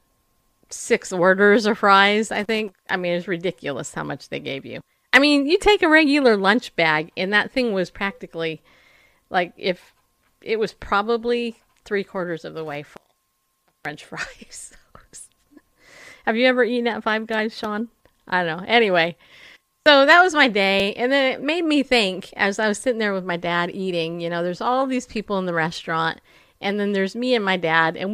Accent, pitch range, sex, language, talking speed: American, 170-225 Hz, female, English, 195 wpm